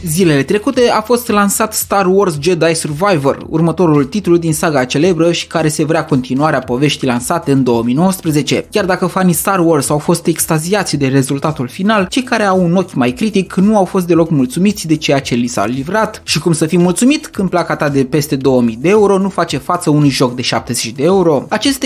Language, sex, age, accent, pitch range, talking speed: Romanian, male, 20-39, native, 145-200 Hz, 205 wpm